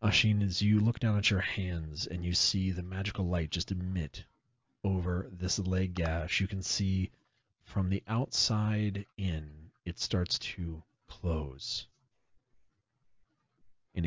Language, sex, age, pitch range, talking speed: English, male, 40-59, 90-105 Hz, 135 wpm